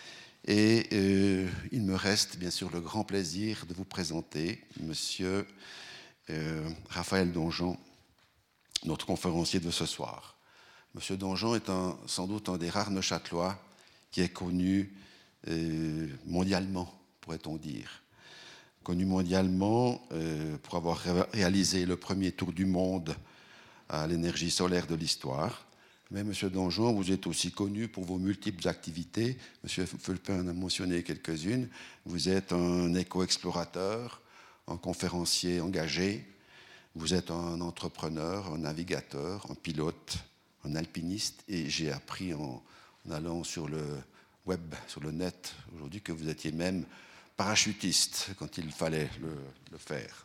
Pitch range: 80-95 Hz